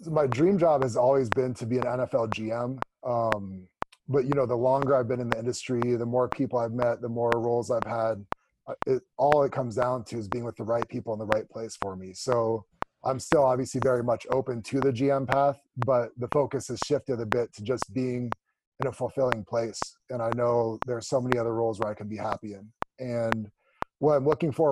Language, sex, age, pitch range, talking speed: English, male, 30-49, 115-135 Hz, 230 wpm